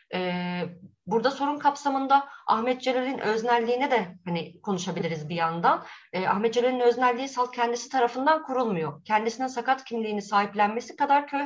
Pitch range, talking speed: 185-265 Hz, 120 wpm